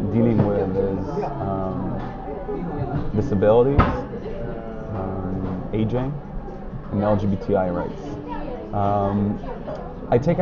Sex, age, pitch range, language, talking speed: male, 20-39, 100-125 Hz, English, 75 wpm